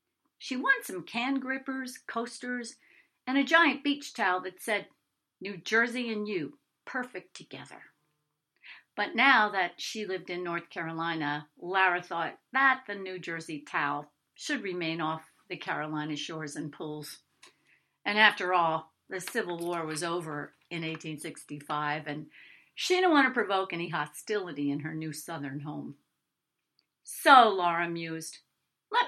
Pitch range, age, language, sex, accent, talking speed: 155-220 Hz, 50-69, English, female, American, 140 wpm